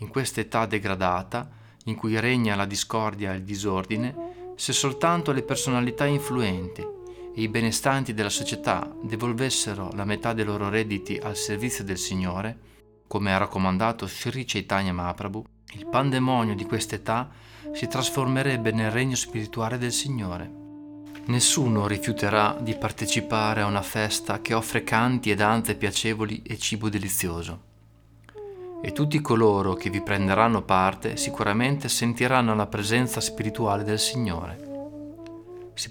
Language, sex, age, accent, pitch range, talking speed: Italian, male, 30-49, native, 105-130 Hz, 135 wpm